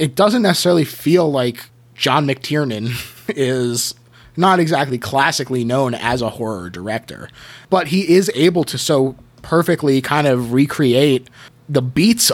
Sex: male